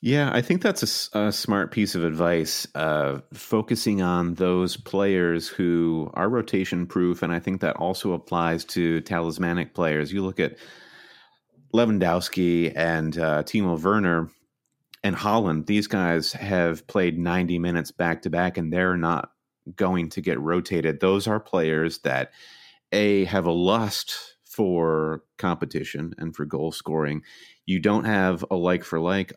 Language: English